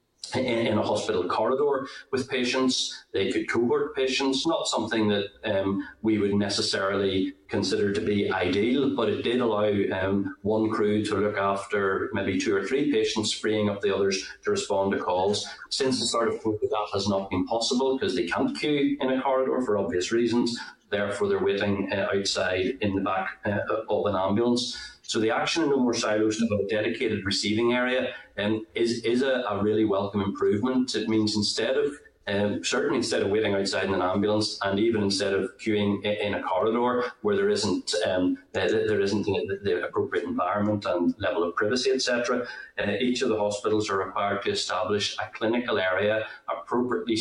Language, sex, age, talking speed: English, male, 30-49, 185 wpm